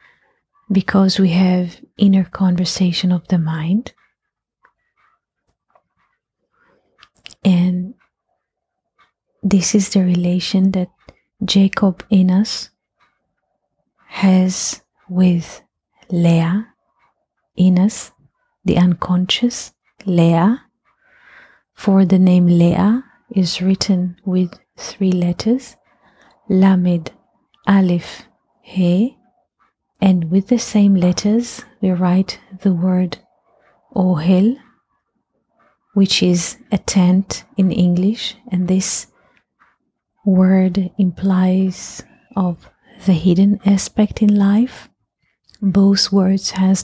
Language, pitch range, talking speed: English, 180-200 Hz, 85 wpm